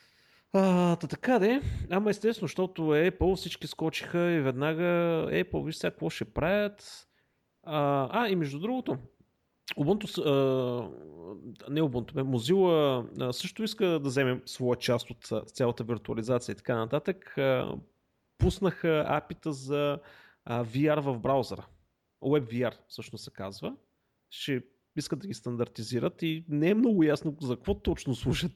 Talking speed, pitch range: 130 wpm, 125-175 Hz